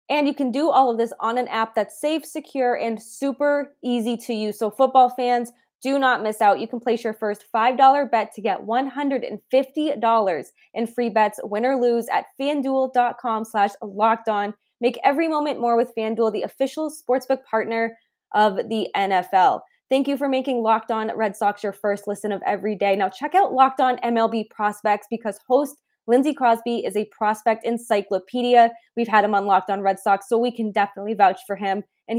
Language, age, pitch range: English, 20-39, 205-255 Hz